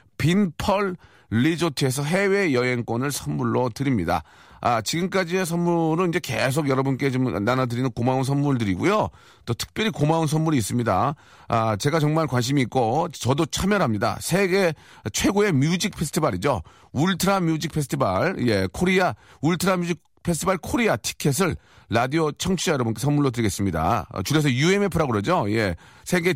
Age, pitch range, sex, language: 40-59, 125-180 Hz, male, Korean